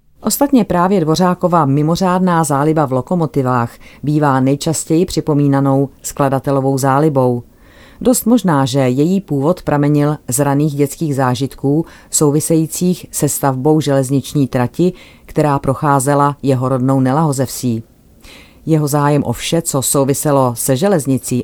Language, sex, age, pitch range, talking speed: Czech, female, 30-49, 130-160 Hz, 110 wpm